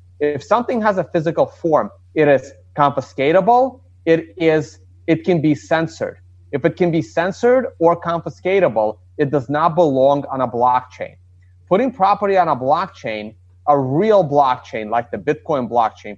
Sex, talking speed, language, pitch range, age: male, 150 wpm, English, 120-185 Hz, 30-49